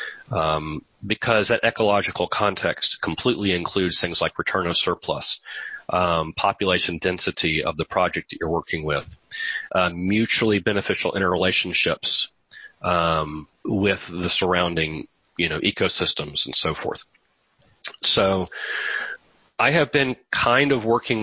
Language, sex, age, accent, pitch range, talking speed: English, male, 30-49, American, 85-105 Hz, 120 wpm